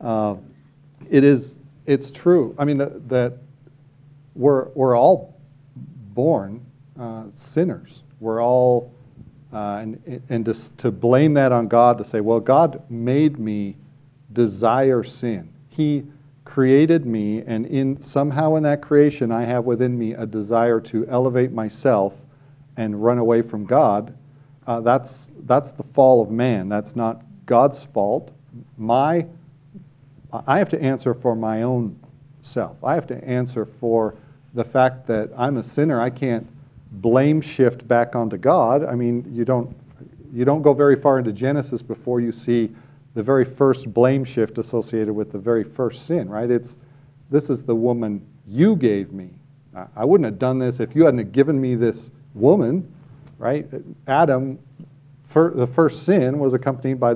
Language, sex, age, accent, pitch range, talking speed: English, male, 40-59, American, 115-140 Hz, 155 wpm